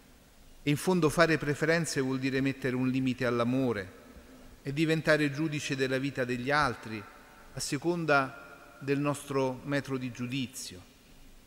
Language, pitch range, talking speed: Italian, 120-150 Hz, 130 wpm